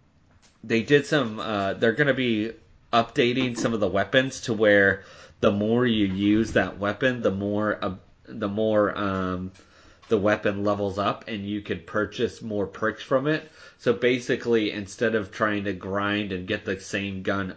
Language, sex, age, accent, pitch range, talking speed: English, male, 30-49, American, 95-115 Hz, 175 wpm